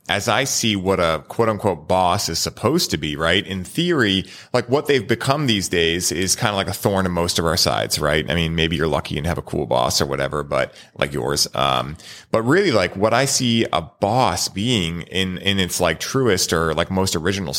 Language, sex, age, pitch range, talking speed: English, male, 30-49, 85-115 Hz, 230 wpm